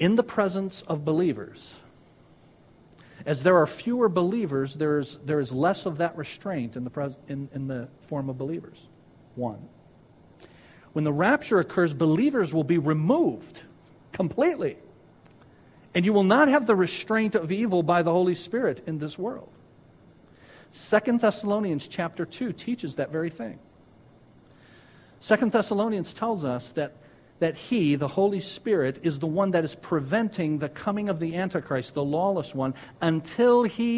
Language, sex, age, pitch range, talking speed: English, male, 50-69, 150-210 Hz, 145 wpm